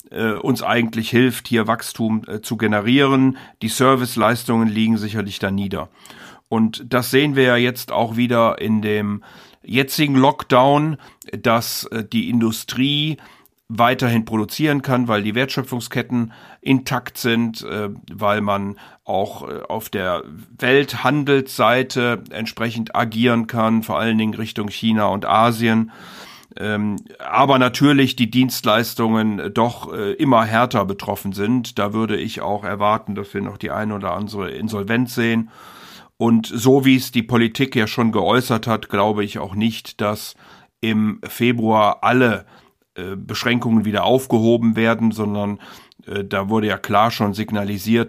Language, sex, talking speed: German, male, 130 wpm